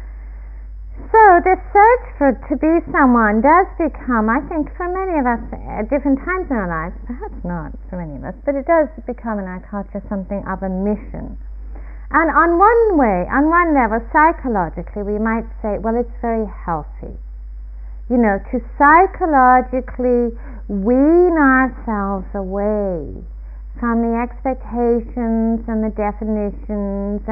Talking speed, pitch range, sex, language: 145 wpm, 195-265 Hz, female, English